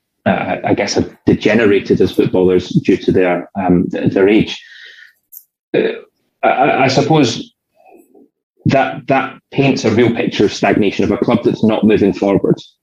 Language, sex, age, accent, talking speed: English, male, 20-39, British, 150 wpm